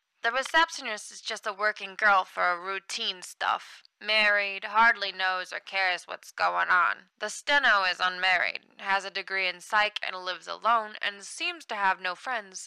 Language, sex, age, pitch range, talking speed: English, female, 10-29, 195-265 Hz, 170 wpm